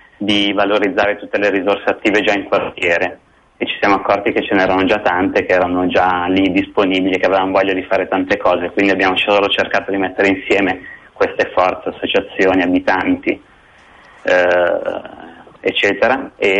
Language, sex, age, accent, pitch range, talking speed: Italian, male, 20-39, native, 95-105 Hz, 160 wpm